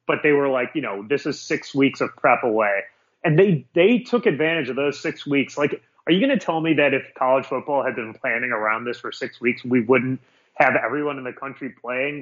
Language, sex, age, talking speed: English, male, 30-49, 240 wpm